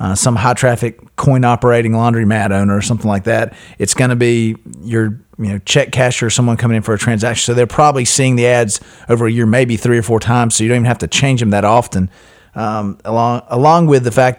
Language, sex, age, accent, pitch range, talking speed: English, male, 40-59, American, 110-130 Hz, 240 wpm